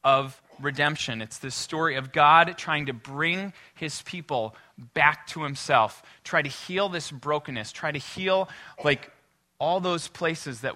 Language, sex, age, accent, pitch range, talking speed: English, male, 20-39, American, 115-150 Hz, 155 wpm